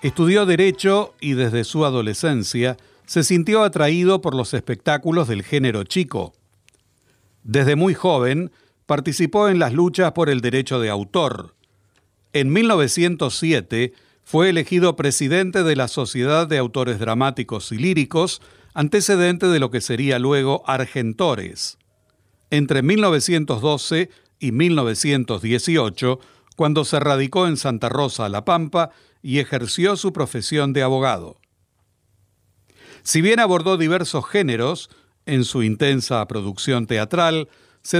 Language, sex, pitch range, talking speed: Spanish, male, 115-165 Hz, 120 wpm